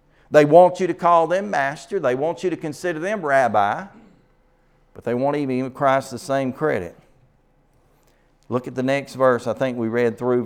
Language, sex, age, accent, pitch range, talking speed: English, male, 40-59, American, 120-155 Hz, 190 wpm